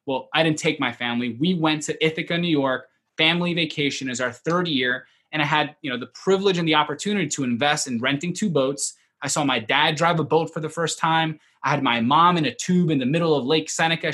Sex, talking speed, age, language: male, 245 wpm, 20-39, English